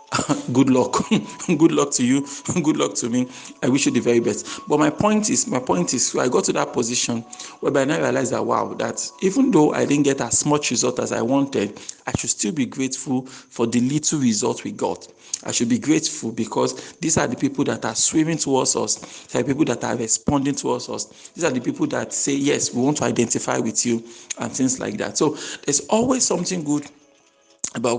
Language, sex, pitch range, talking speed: English, male, 120-150 Hz, 220 wpm